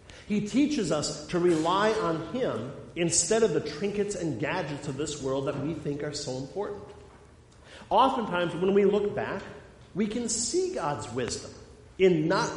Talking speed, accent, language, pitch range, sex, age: 160 wpm, American, English, 120-175 Hz, male, 50-69